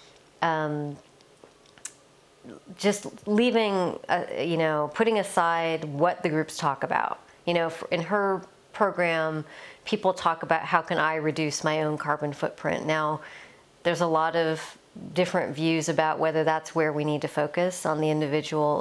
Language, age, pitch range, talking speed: Swedish, 40-59, 155-180 Hz, 150 wpm